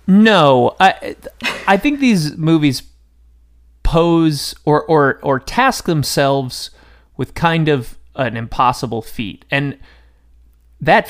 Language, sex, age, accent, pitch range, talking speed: English, male, 30-49, American, 105-145 Hz, 110 wpm